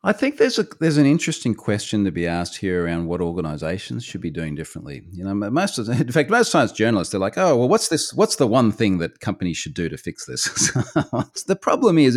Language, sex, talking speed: English, male, 245 wpm